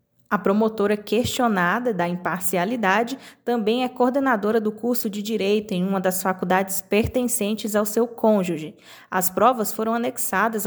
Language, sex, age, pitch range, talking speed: Portuguese, female, 20-39, 190-230 Hz, 135 wpm